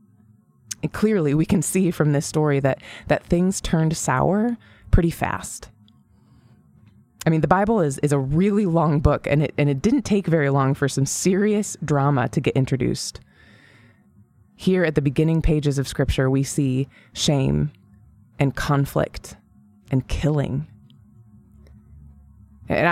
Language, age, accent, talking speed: English, 20-39, American, 140 wpm